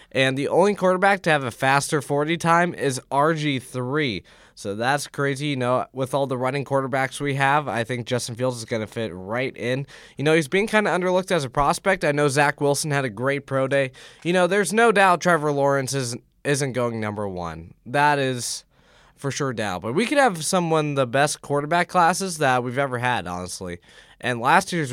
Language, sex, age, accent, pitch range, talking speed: English, male, 20-39, American, 130-165 Hz, 210 wpm